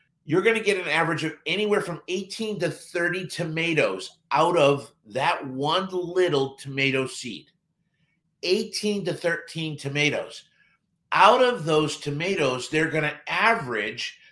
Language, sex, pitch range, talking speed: English, male, 155-195 Hz, 125 wpm